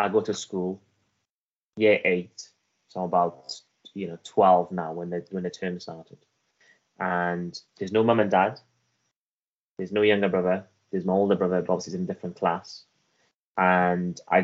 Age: 20-39